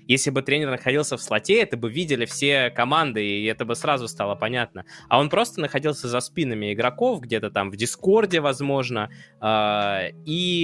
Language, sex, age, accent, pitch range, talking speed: Russian, male, 20-39, native, 115-150 Hz, 170 wpm